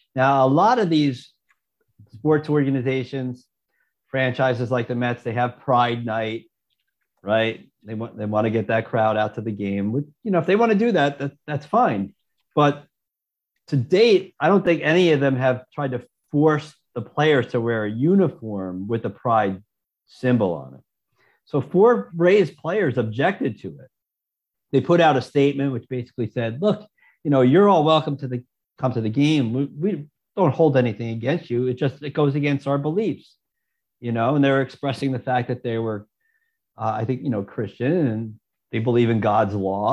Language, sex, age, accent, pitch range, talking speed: English, male, 50-69, American, 120-160 Hz, 190 wpm